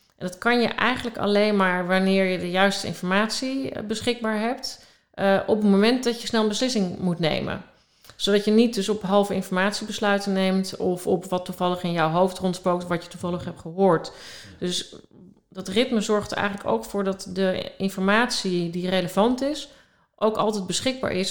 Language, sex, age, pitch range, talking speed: Dutch, female, 40-59, 175-200 Hz, 180 wpm